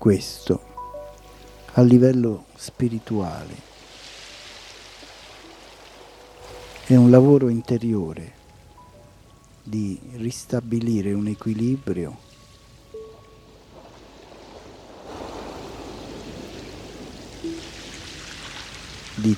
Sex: male